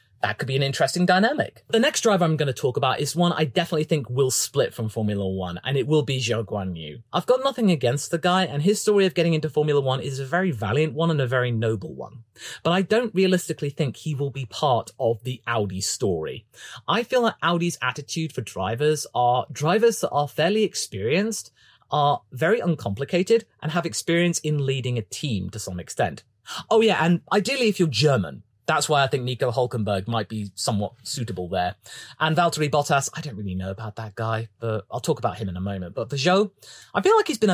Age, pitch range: 30-49, 115-170 Hz